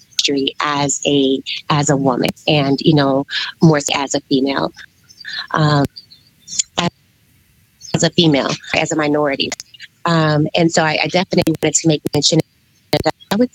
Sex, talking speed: female, 145 wpm